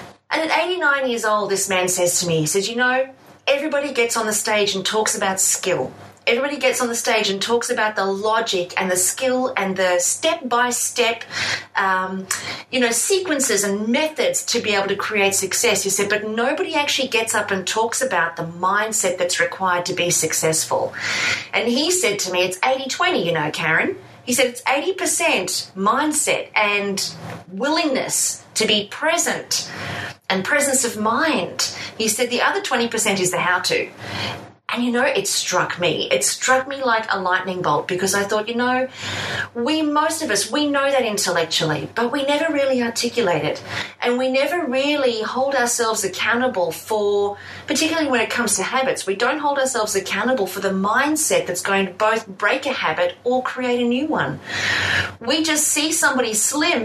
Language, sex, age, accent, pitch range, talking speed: English, female, 30-49, Australian, 195-270 Hz, 180 wpm